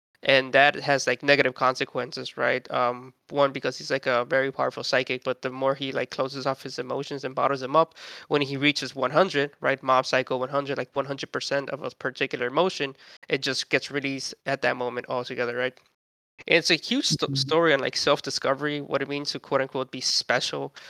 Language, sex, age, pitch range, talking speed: English, male, 20-39, 130-145 Hz, 200 wpm